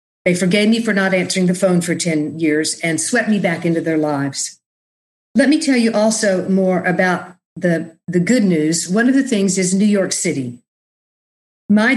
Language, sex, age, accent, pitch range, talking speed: English, female, 50-69, American, 165-210 Hz, 190 wpm